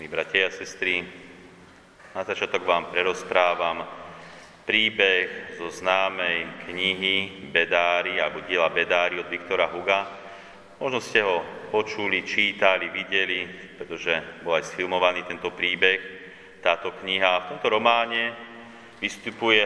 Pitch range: 90-105 Hz